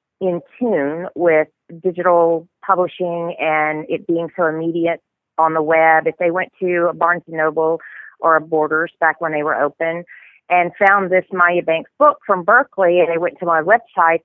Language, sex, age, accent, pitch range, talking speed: English, female, 40-59, American, 155-175 Hz, 180 wpm